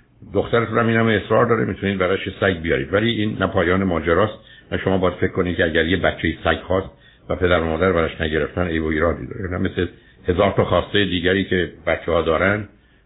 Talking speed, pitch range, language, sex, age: 210 wpm, 85-105 Hz, Persian, male, 60-79